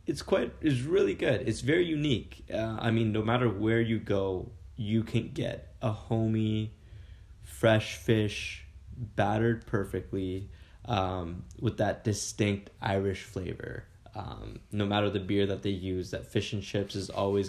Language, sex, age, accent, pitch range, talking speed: English, male, 10-29, American, 95-110 Hz, 155 wpm